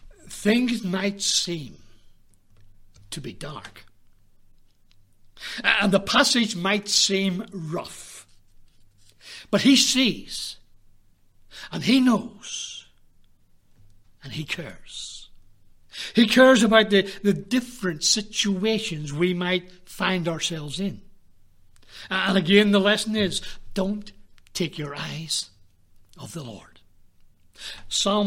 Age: 60-79